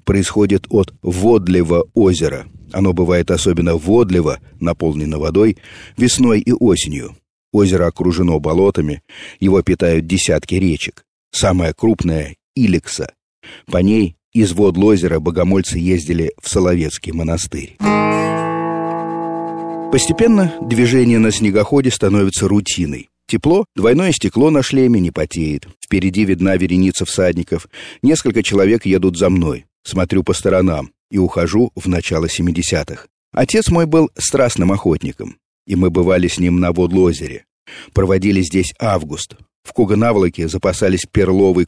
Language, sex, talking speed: Russian, male, 115 wpm